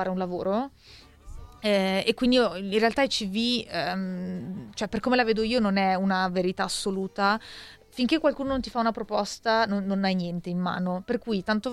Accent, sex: native, female